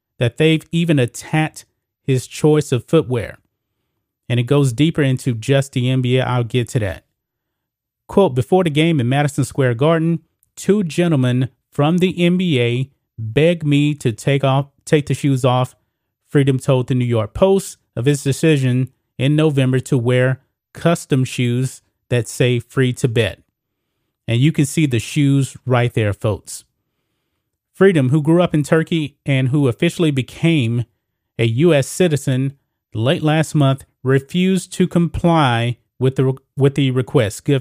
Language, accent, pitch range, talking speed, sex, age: English, American, 120-155 Hz, 155 wpm, male, 30-49